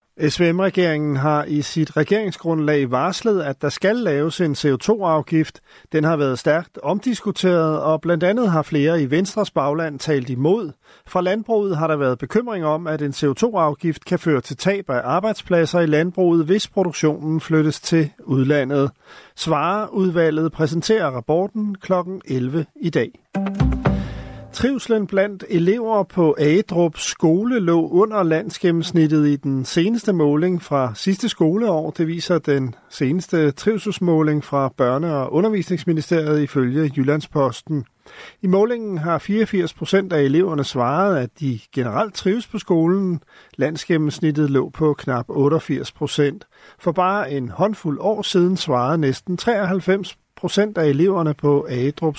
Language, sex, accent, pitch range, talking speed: Danish, male, native, 145-185 Hz, 135 wpm